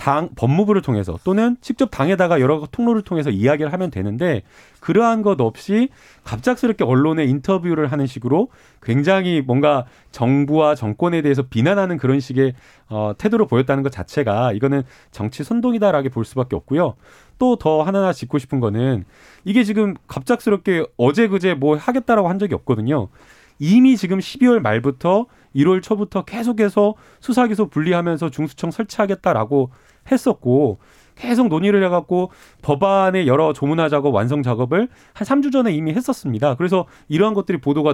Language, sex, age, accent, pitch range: Korean, male, 30-49, native, 135-205 Hz